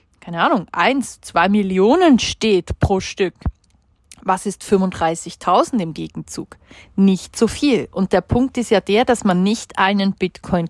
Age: 40-59